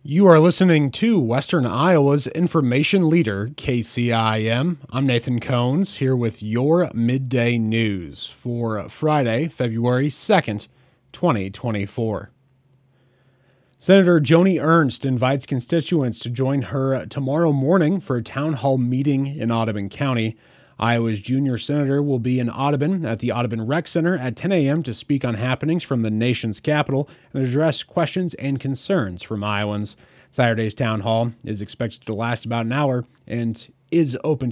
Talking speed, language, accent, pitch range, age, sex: 145 wpm, English, American, 120-150 Hz, 30-49, male